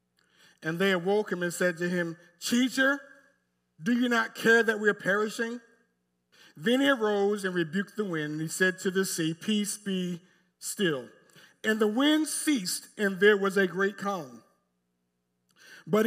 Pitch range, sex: 155-205 Hz, male